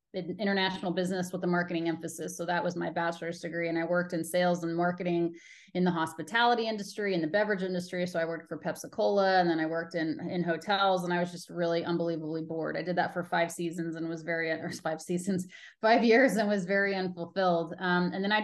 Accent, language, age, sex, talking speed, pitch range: American, English, 30-49, female, 225 wpm, 170-190 Hz